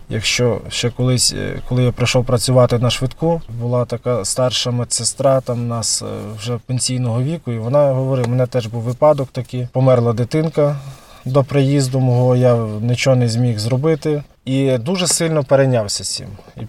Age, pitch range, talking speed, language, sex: 20-39, 120-135 Hz, 160 wpm, Ukrainian, male